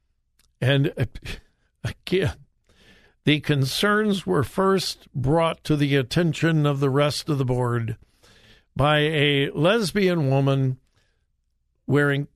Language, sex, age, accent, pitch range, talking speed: English, male, 60-79, American, 120-160 Hz, 100 wpm